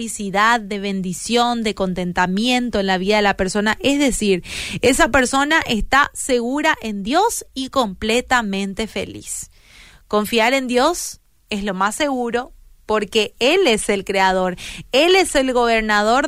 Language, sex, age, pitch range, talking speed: Spanish, female, 20-39, 210-275 Hz, 140 wpm